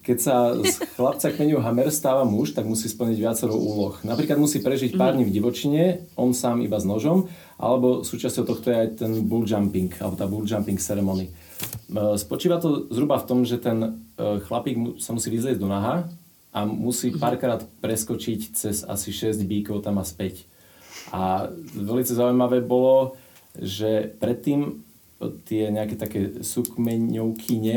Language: Slovak